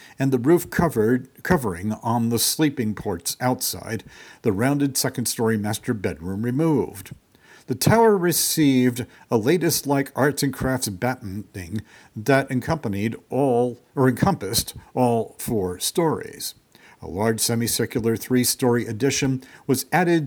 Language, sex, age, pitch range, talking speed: English, male, 60-79, 110-145 Hz, 115 wpm